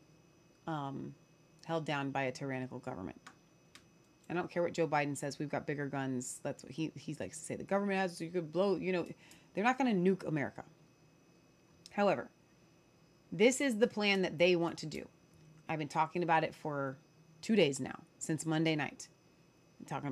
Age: 30-49